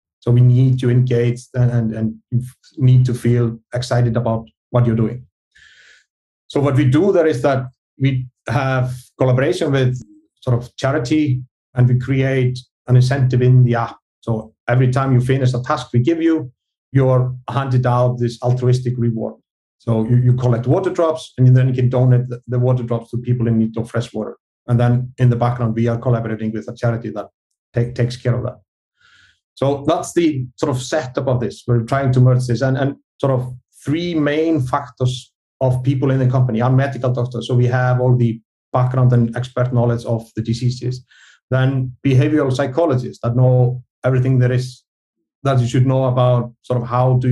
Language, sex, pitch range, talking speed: English, male, 120-130 Hz, 185 wpm